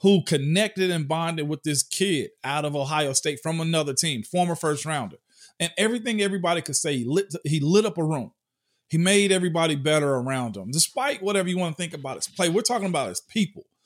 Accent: American